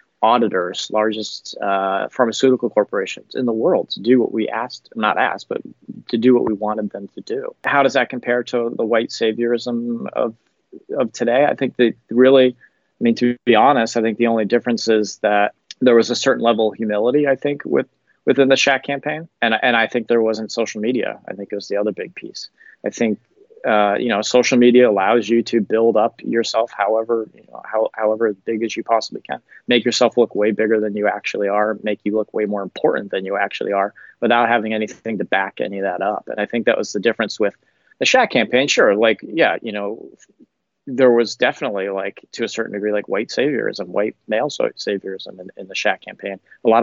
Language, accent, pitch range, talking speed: English, American, 105-120 Hz, 215 wpm